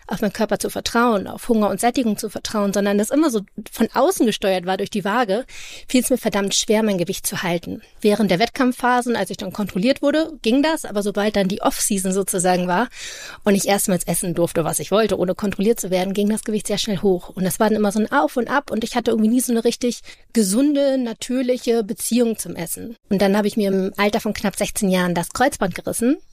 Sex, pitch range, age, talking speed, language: female, 200-230 Hz, 30-49, 235 wpm, German